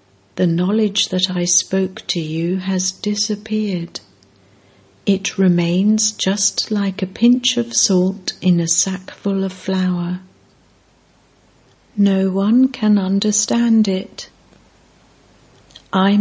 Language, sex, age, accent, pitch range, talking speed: English, female, 60-79, British, 175-205 Hz, 105 wpm